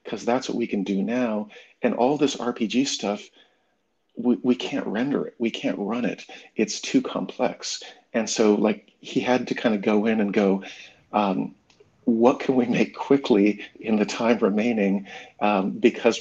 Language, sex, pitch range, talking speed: English, male, 105-125 Hz, 180 wpm